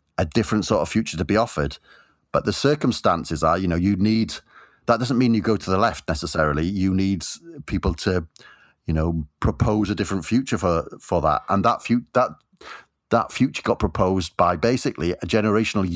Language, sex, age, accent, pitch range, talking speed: English, male, 40-59, British, 85-110 Hz, 190 wpm